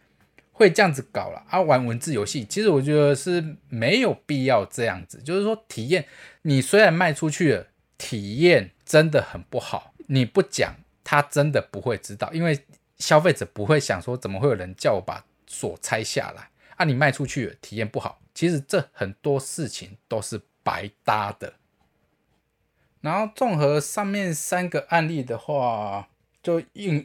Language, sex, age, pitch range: Chinese, male, 20-39, 115-160 Hz